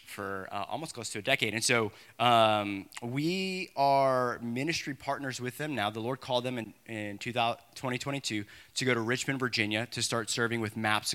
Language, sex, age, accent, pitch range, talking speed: English, male, 20-39, American, 110-135 Hz, 185 wpm